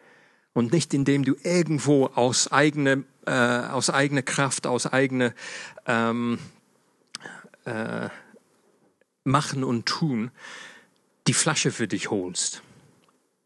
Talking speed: 105 wpm